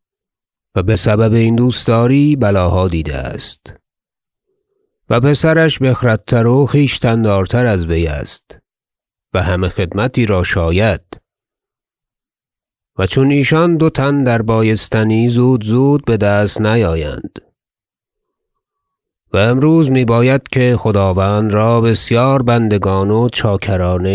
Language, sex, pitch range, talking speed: Persian, male, 100-140 Hz, 105 wpm